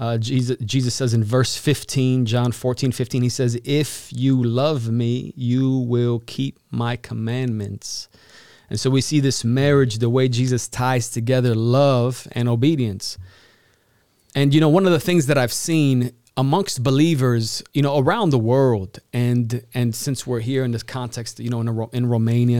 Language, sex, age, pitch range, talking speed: Romanian, male, 30-49, 115-140 Hz, 175 wpm